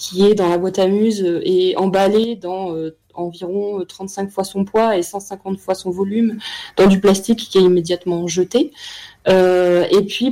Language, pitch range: French, 175-215 Hz